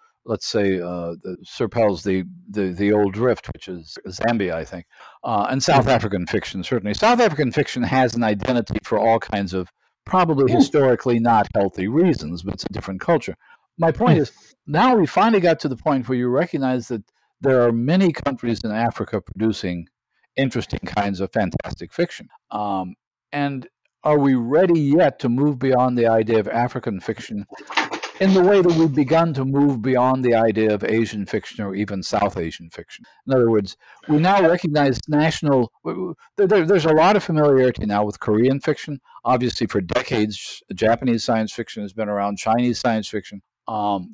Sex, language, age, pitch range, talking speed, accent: male, English, 50-69, 105-145 Hz, 175 wpm, American